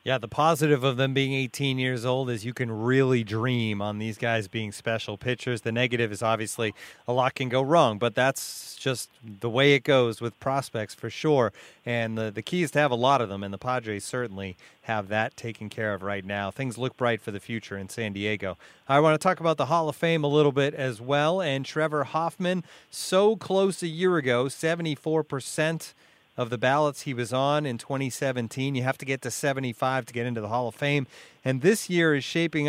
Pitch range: 115-150 Hz